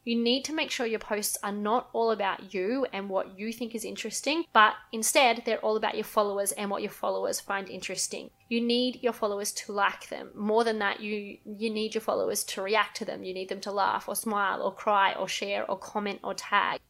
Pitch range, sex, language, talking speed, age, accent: 205-245 Hz, female, English, 230 wpm, 20-39, Australian